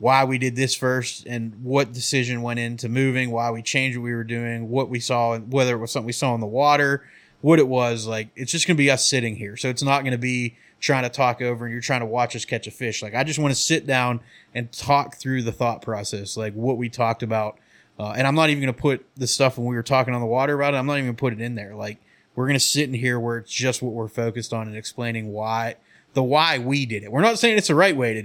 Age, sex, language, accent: 20-39, male, English, American